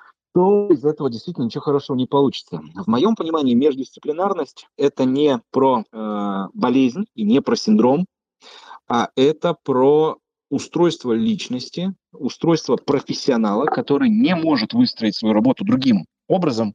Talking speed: 130 wpm